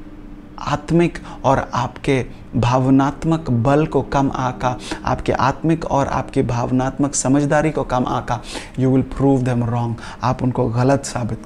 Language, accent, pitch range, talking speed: English, Indian, 105-135 Hz, 135 wpm